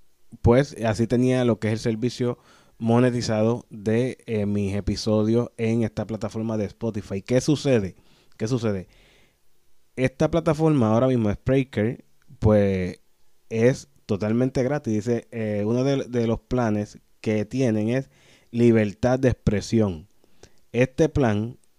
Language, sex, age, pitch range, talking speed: Spanish, male, 20-39, 110-130 Hz, 125 wpm